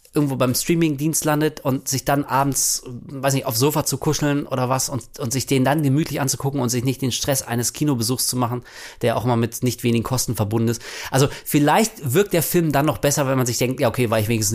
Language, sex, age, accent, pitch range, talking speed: German, male, 30-49, German, 130-170 Hz, 240 wpm